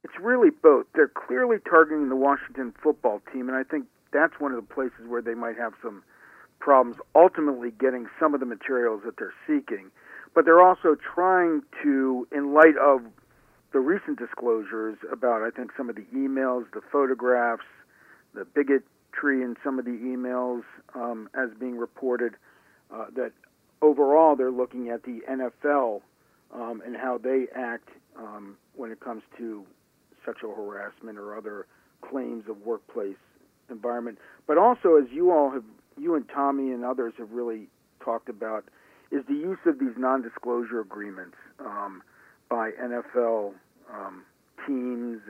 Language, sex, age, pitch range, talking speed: English, male, 50-69, 115-145 Hz, 155 wpm